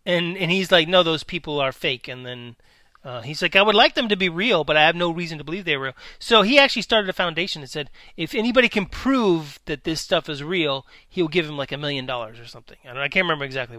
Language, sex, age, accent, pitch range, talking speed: English, male, 30-49, American, 150-210 Hz, 270 wpm